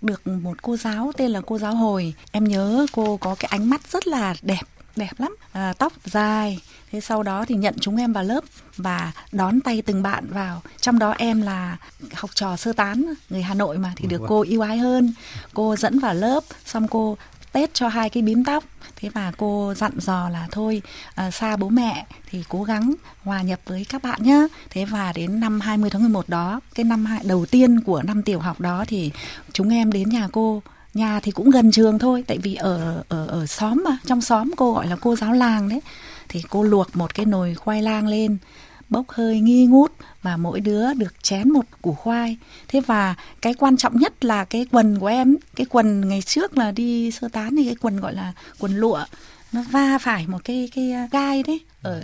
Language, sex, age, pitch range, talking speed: Vietnamese, female, 20-39, 195-240 Hz, 220 wpm